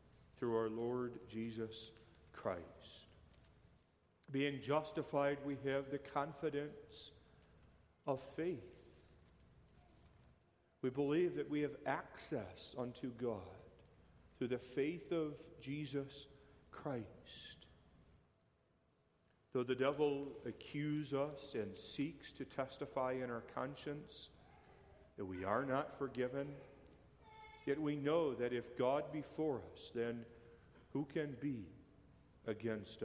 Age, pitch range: 40-59, 115-145 Hz